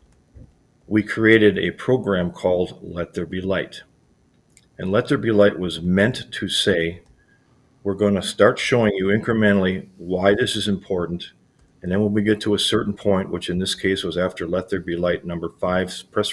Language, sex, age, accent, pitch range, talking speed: English, male, 50-69, American, 90-110 Hz, 185 wpm